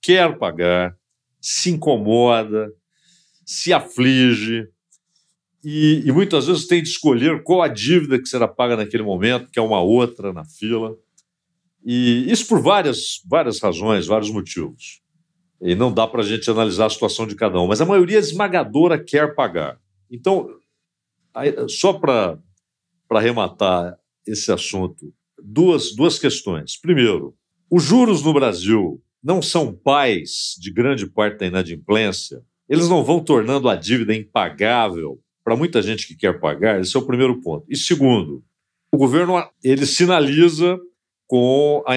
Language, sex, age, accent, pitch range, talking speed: Portuguese, male, 60-79, Brazilian, 110-155 Hz, 145 wpm